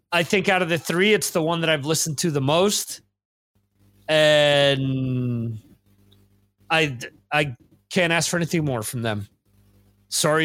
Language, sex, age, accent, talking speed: English, male, 30-49, American, 150 wpm